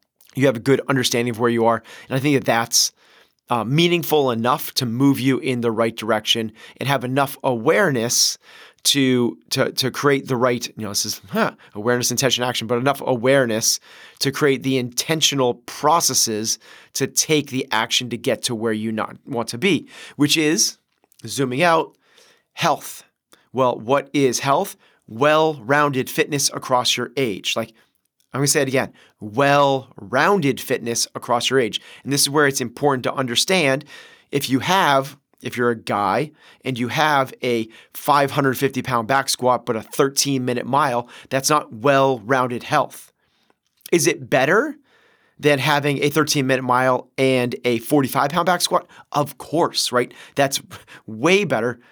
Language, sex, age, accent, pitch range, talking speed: English, male, 30-49, American, 120-140 Hz, 165 wpm